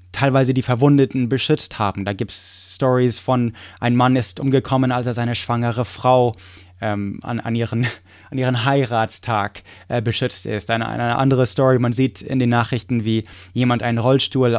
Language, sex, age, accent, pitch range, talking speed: English, male, 20-39, German, 105-140 Hz, 175 wpm